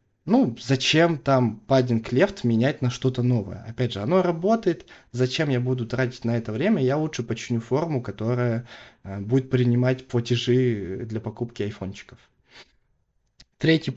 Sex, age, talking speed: male, 20-39, 140 wpm